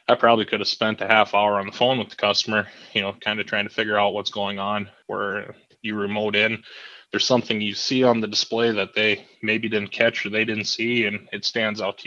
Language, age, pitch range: English, 20-39, 105-110 Hz